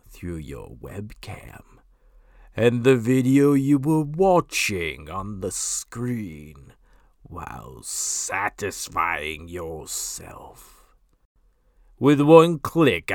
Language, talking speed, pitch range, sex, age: English, 80 wpm, 90-135 Hz, male, 50-69